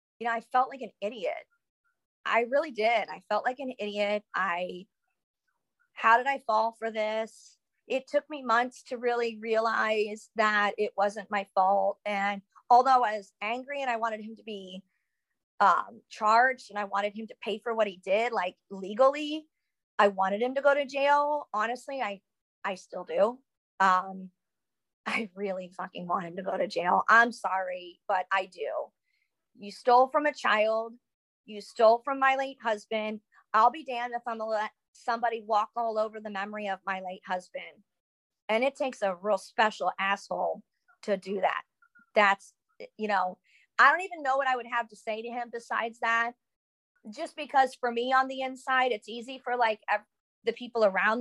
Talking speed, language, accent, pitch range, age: 180 wpm, English, American, 205-265 Hz, 30-49